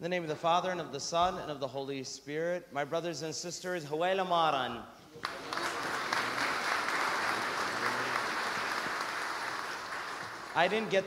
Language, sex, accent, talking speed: English, male, American, 120 wpm